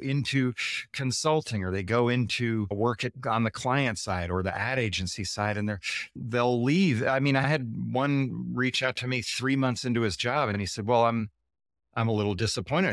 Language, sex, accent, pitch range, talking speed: English, male, American, 100-135 Hz, 205 wpm